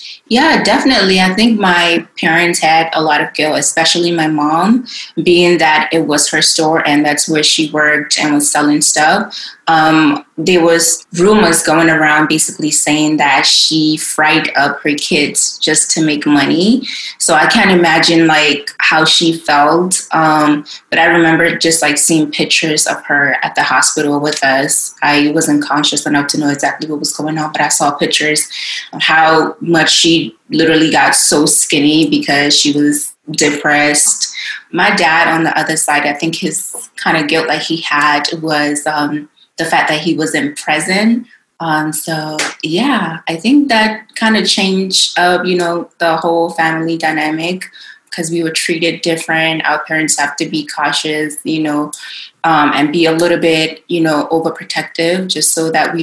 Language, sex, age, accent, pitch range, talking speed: English, female, 20-39, American, 150-170 Hz, 175 wpm